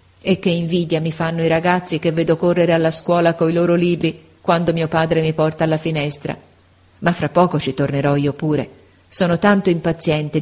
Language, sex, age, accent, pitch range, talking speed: Italian, female, 40-59, native, 150-190 Hz, 185 wpm